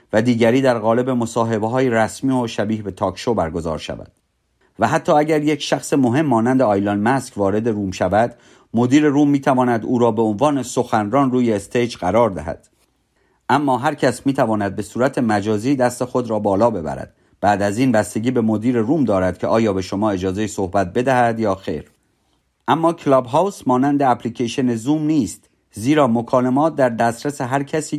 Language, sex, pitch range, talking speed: Persian, male, 105-135 Hz, 170 wpm